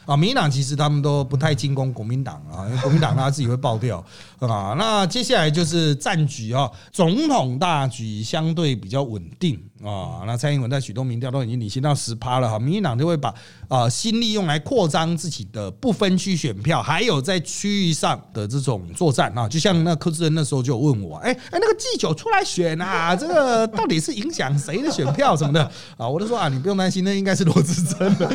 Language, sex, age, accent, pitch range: Chinese, male, 30-49, native, 125-185 Hz